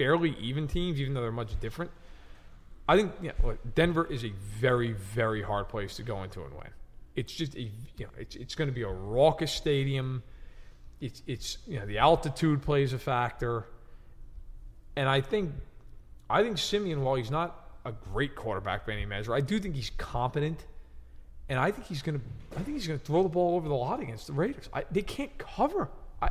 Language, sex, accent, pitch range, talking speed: English, male, American, 115-160 Hz, 210 wpm